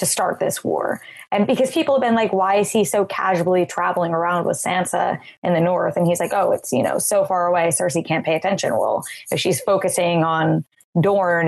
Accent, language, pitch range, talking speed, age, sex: American, English, 170-200 Hz, 220 wpm, 20-39, female